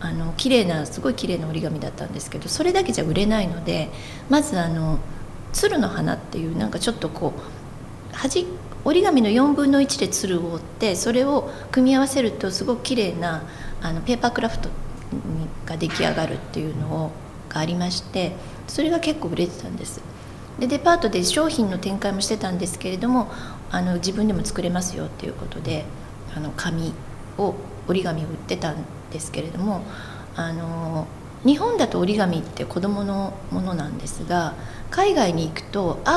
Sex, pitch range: female, 160-225 Hz